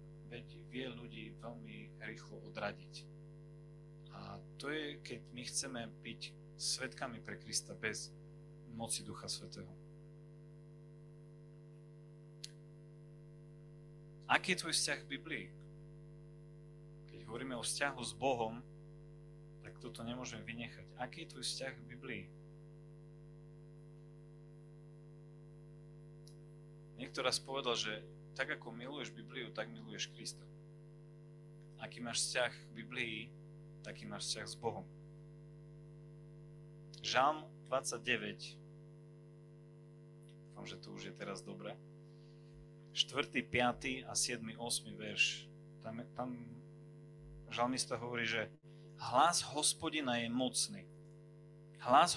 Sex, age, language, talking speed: male, 30-49, Slovak, 100 wpm